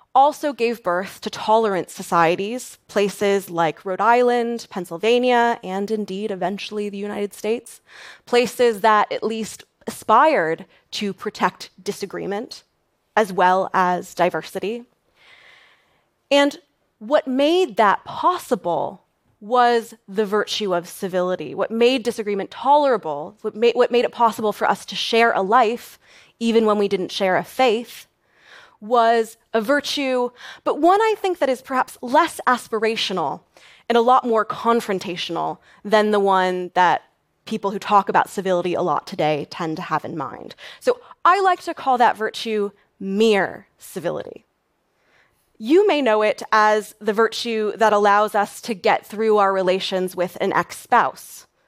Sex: female